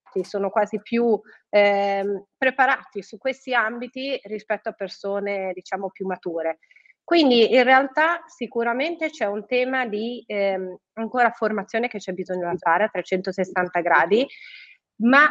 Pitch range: 200-245 Hz